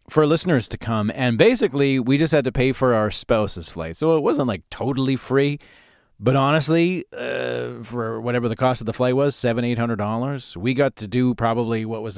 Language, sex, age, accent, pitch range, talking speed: English, male, 30-49, American, 110-140 Hz, 205 wpm